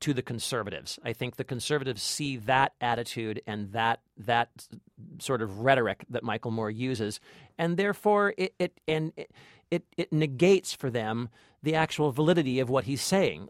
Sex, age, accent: male, 40-59, American